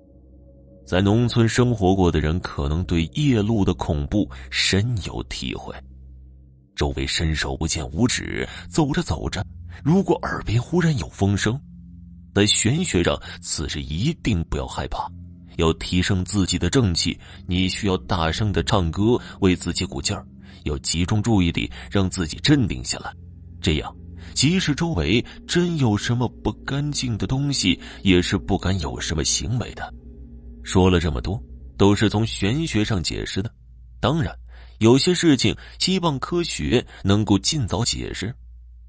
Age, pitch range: 30-49, 75-115 Hz